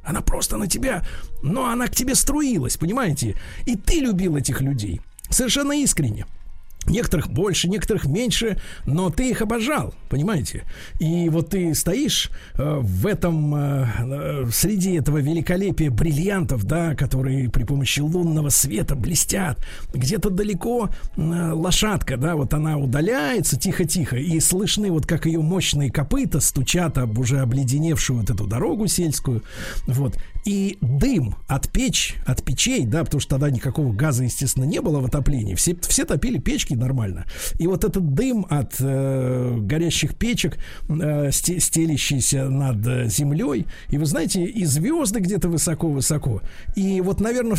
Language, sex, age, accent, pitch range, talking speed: Russian, male, 50-69, native, 130-180 Hz, 140 wpm